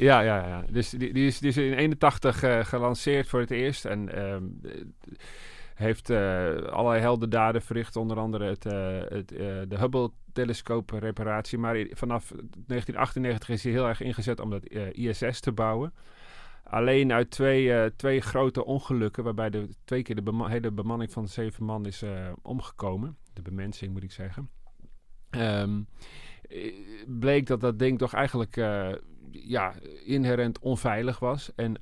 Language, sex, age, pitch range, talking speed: Dutch, male, 40-59, 100-125 Hz, 160 wpm